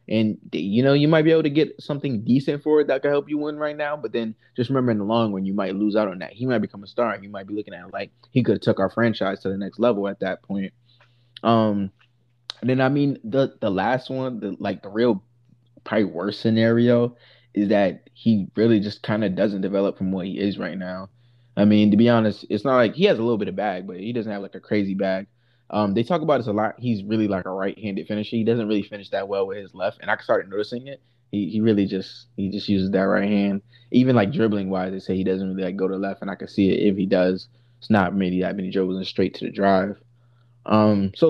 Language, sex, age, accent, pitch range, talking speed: English, male, 20-39, American, 100-120 Hz, 275 wpm